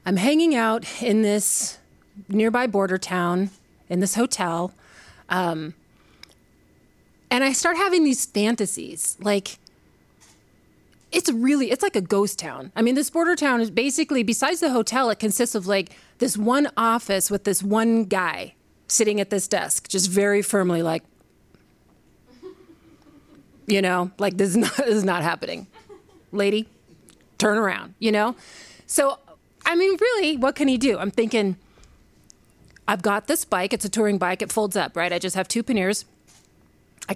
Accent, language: American, English